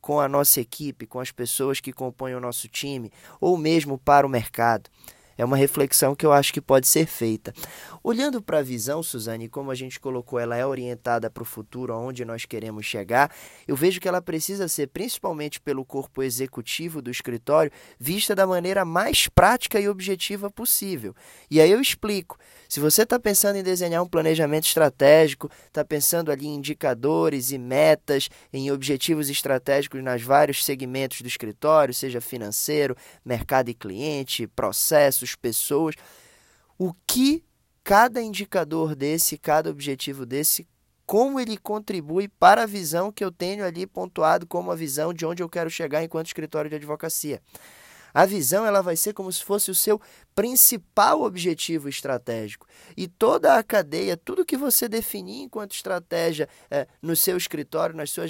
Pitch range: 135-190 Hz